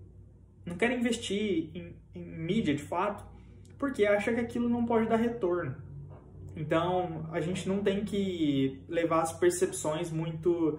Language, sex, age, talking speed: Portuguese, male, 20-39, 145 wpm